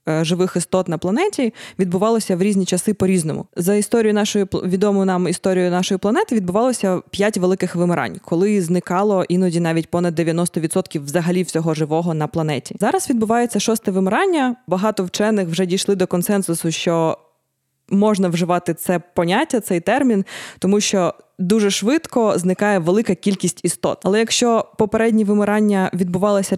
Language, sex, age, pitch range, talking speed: Ukrainian, female, 20-39, 180-215 Hz, 140 wpm